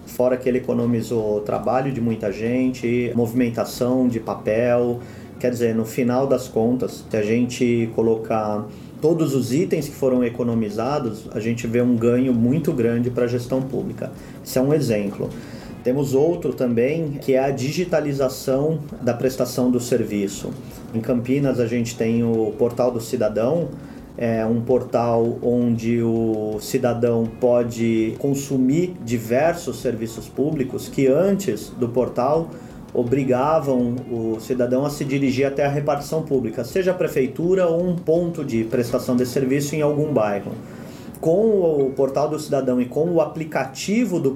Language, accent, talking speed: Portuguese, Brazilian, 150 wpm